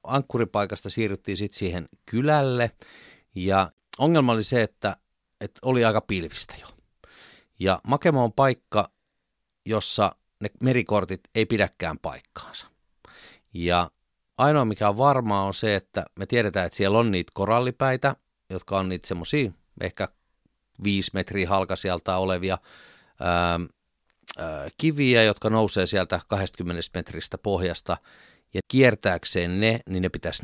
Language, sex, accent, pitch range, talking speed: Finnish, male, native, 90-110 Hz, 125 wpm